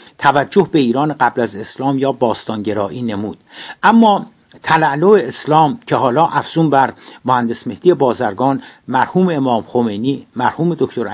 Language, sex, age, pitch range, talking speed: Persian, male, 60-79, 120-155 Hz, 130 wpm